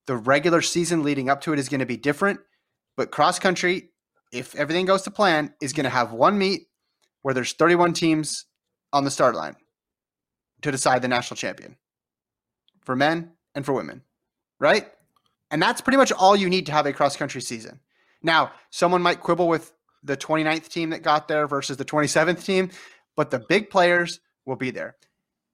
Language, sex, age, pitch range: English, male, 30-49, 130-165 Hz